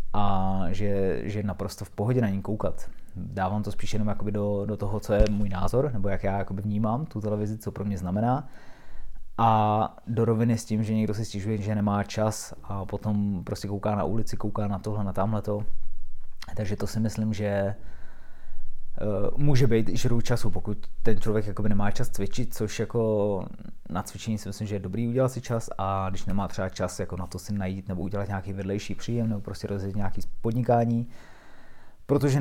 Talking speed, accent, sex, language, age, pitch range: 185 wpm, native, male, Czech, 20-39, 100-115 Hz